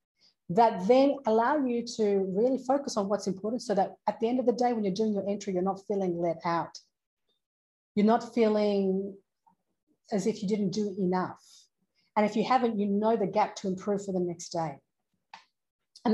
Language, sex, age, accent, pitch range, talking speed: English, female, 40-59, Australian, 180-235 Hz, 195 wpm